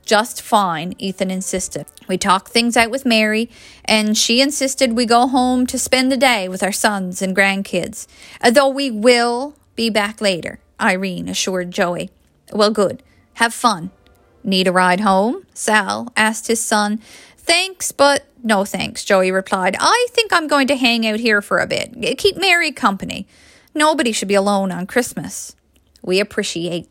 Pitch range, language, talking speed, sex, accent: 195-265 Hz, English, 165 wpm, female, American